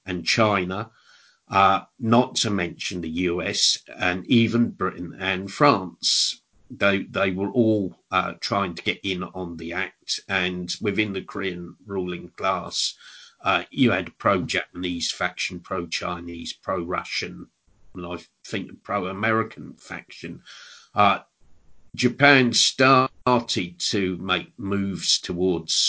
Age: 50-69